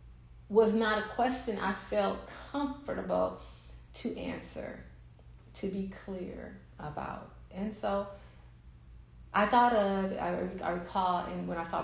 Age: 40-59